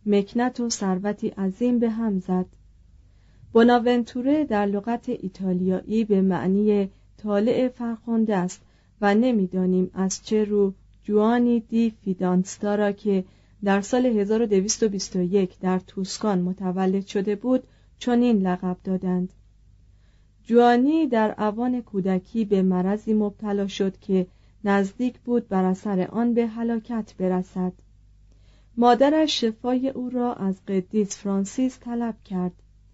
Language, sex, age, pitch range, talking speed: Persian, female, 40-59, 185-235 Hz, 115 wpm